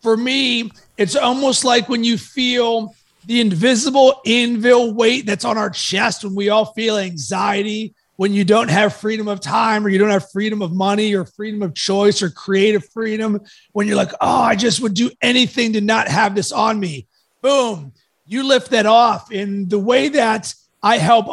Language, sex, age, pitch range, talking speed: English, male, 30-49, 200-235 Hz, 190 wpm